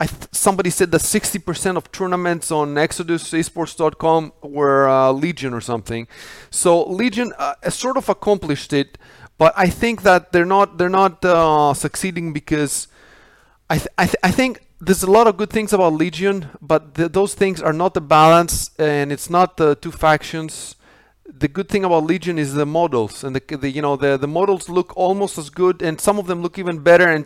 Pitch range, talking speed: 150-205 Hz, 200 wpm